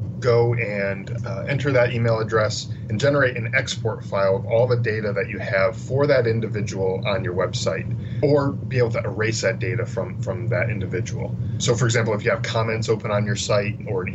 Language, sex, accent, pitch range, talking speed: English, male, American, 110-120 Hz, 210 wpm